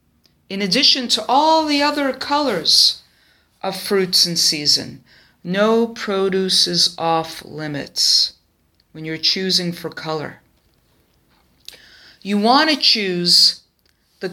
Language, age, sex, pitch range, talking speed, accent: English, 50-69, female, 155-205 Hz, 110 wpm, American